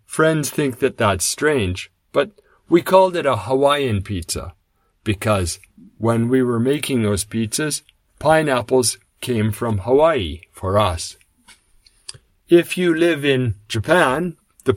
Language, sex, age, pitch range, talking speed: English, male, 50-69, 100-150 Hz, 125 wpm